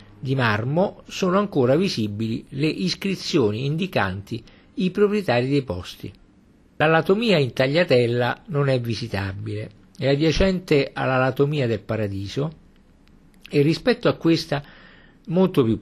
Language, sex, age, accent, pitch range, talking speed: Italian, male, 50-69, native, 110-155 Hz, 110 wpm